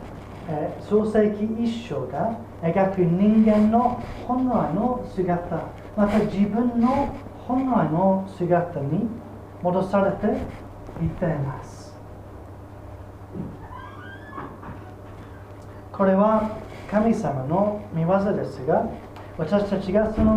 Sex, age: male, 30-49